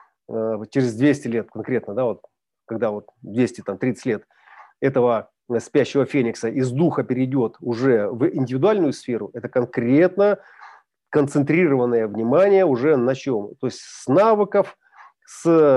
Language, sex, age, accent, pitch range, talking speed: Russian, male, 40-59, native, 130-190 Hz, 115 wpm